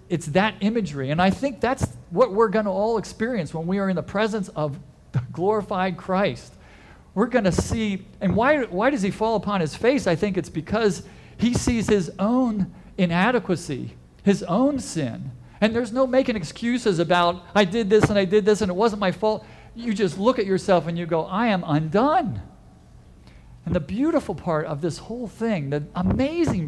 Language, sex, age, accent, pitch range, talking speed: English, male, 50-69, American, 145-215 Hz, 195 wpm